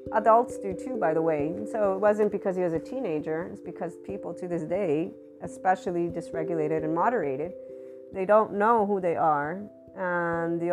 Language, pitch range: English, 165-200 Hz